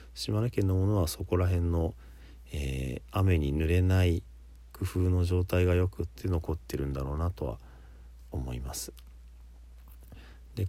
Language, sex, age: Japanese, male, 40-59